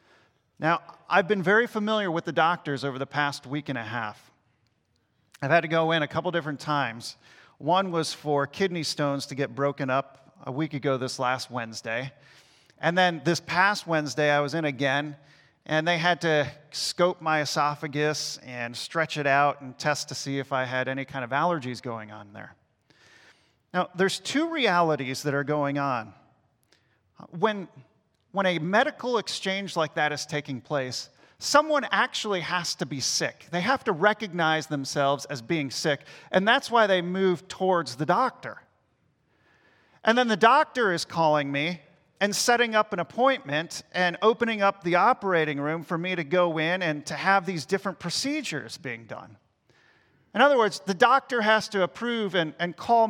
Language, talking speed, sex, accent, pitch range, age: English, 175 wpm, male, American, 140-190 Hz, 40-59